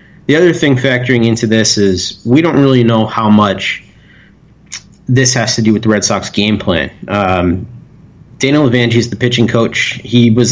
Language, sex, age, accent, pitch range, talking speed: English, male, 30-49, American, 105-130 Hz, 185 wpm